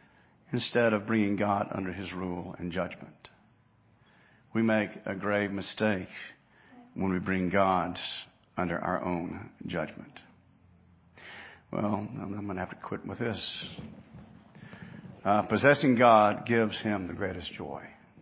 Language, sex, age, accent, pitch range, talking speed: English, male, 50-69, American, 105-140 Hz, 130 wpm